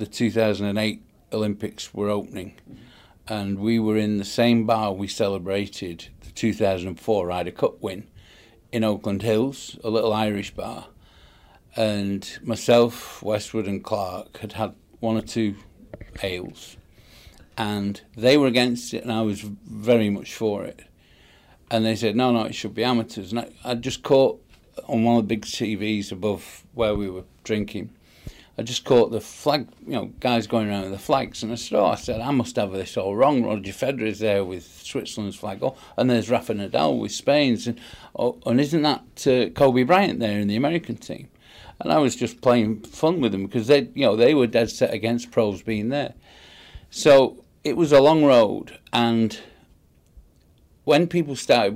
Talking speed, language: 180 wpm, English